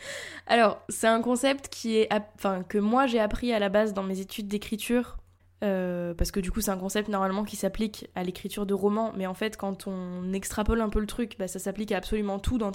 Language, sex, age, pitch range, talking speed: French, female, 10-29, 195-230 Hz, 235 wpm